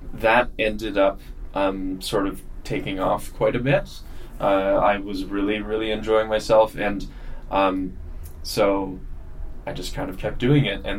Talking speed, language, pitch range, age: 160 wpm, English, 85-120 Hz, 10-29